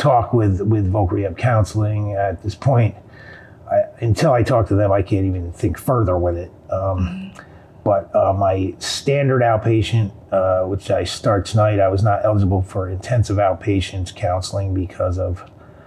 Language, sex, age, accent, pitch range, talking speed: English, male, 40-59, American, 95-110 Hz, 160 wpm